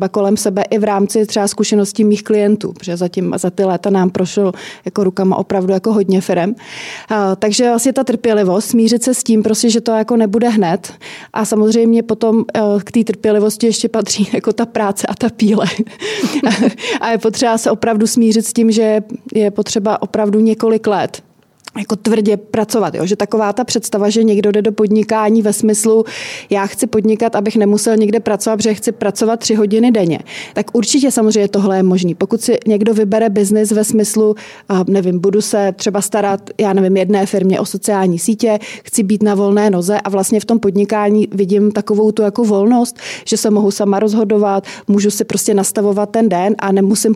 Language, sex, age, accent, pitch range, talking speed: Czech, female, 30-49, native, 200-225 Hz, 185 wpm